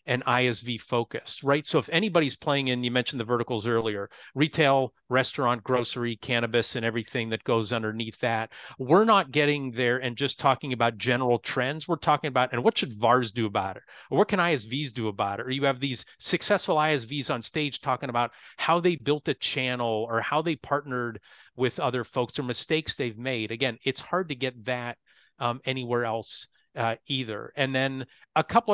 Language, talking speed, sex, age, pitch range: English, 190 wpm, male, 30-49, 120-150 Hz